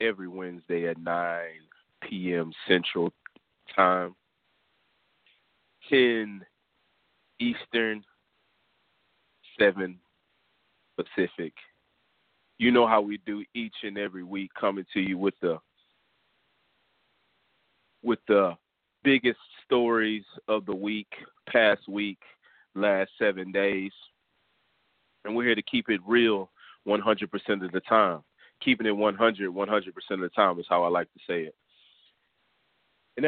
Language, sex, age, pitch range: English, male, 30-49, 95-115 Hz